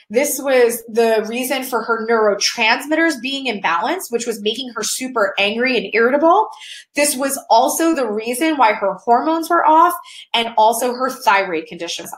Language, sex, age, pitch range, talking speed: English, female, 20-39, 230-325 Hz, 160 wpm